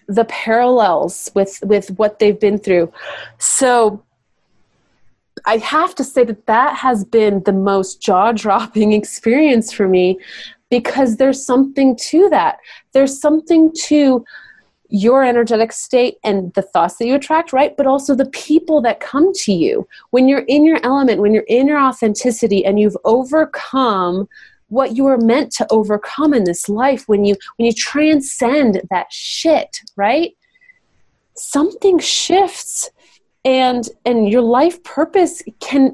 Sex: female